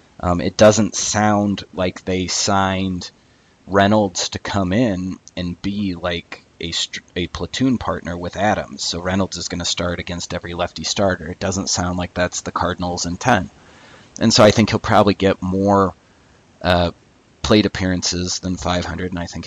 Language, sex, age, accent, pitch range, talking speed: English, male, 30-49, American, 90-100 Hz, 165 wpm